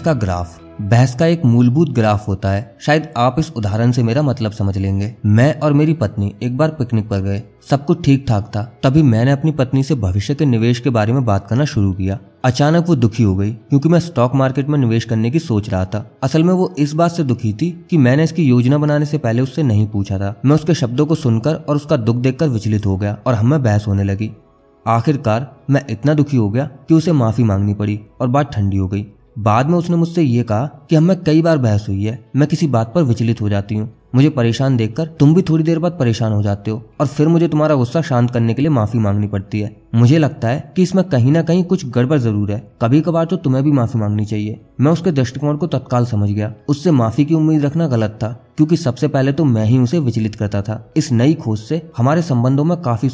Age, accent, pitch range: 20-39, native, 110-150 Hz